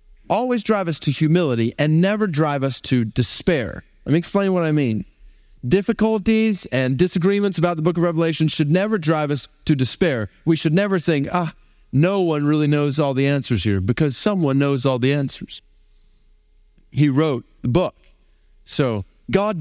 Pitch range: 125-180 Hz